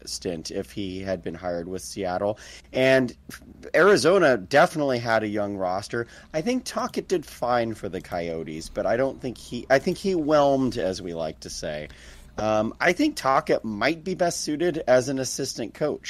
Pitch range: 100-150 Hz